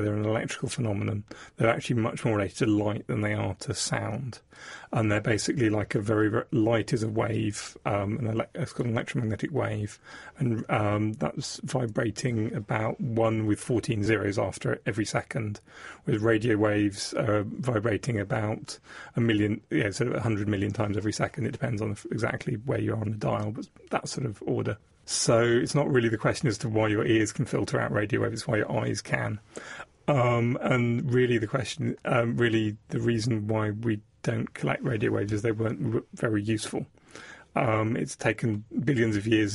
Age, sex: 30-49, male